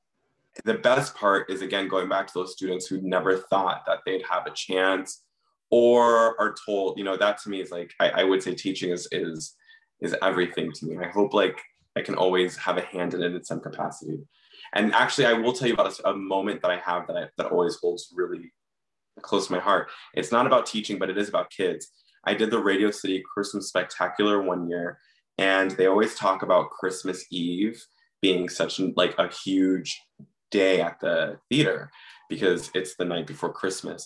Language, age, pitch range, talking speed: English, 20-39, 95-120 Hz, 205 wpm